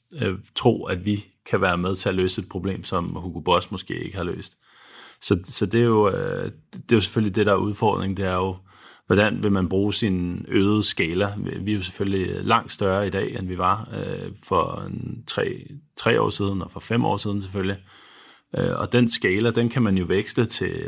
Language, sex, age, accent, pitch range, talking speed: Danish, male, 30-49, native, 95-110 Hz, 205 wpm